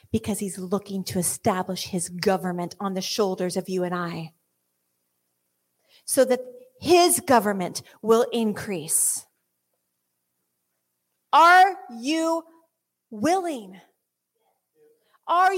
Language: English